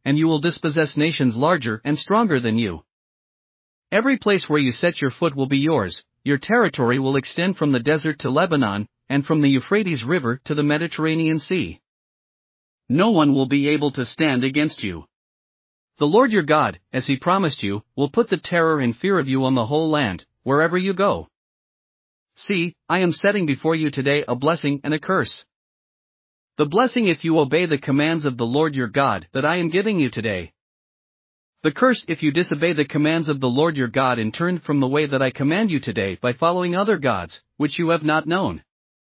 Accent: American